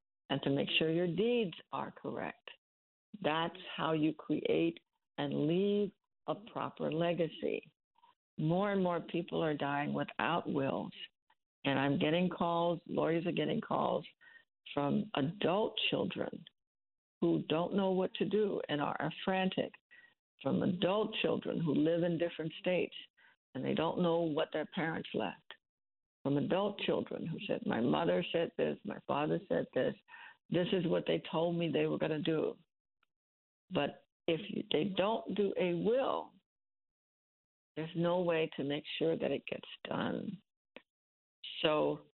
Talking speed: 145 wpm